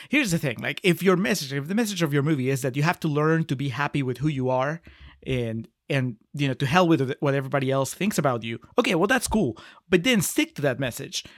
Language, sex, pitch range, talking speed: English, male, 140-180 Hz, 260 wpm